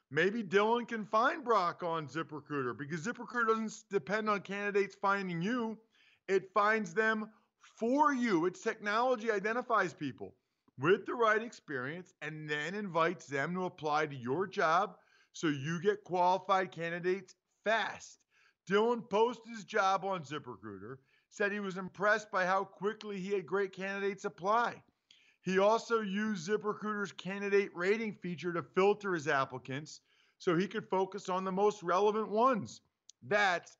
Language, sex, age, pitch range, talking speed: English, male, 40-59, 160-215 Hz, 145 wpm